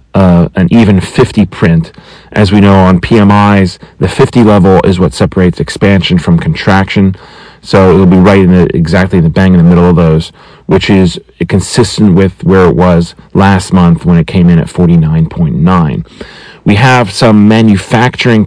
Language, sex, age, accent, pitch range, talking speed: English, male, 40-59, American, 90-105 Hz, 170 wpm